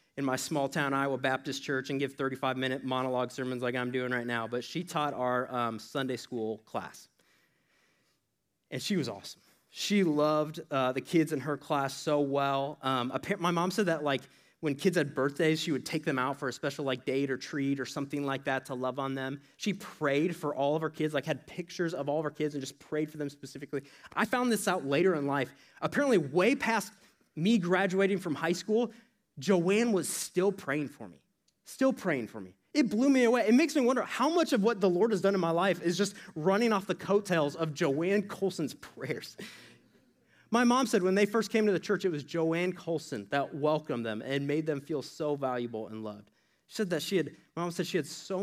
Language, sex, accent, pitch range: English, male, American, 135-185 Hz